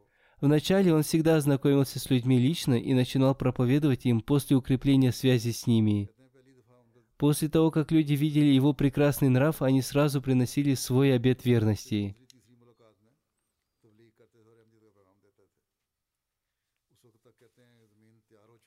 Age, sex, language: 20-39, male, Russian